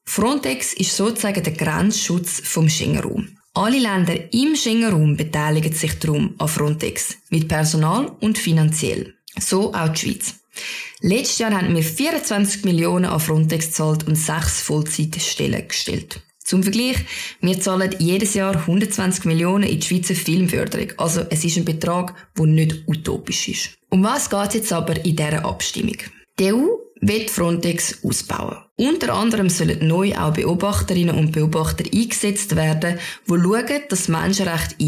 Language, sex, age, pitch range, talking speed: German, female, 20-39, 160-210 Hz, 150 wpm